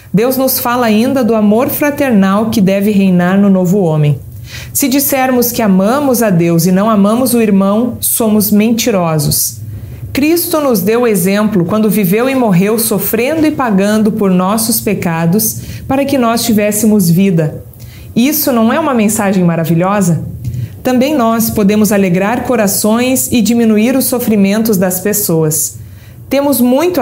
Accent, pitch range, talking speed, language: Brazilian, 175-235 Hz, 140 wpm, Portuguese